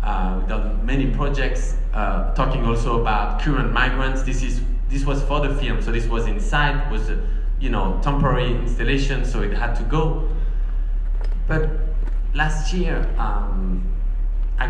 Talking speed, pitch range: 160 wpm, 110-140 Hz